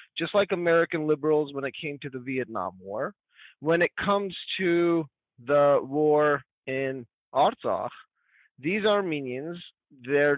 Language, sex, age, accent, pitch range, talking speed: English, male, 30-49, American, 130-160 Hz, 125 wpm